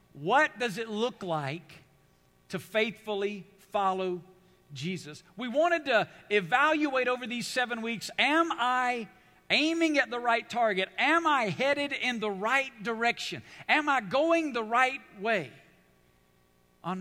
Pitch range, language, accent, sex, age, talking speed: 180-235 Hz, English, American, male, 50-69, 135 wpm